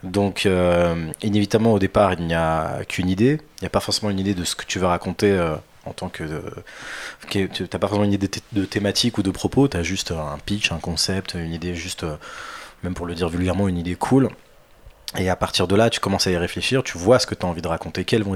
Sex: male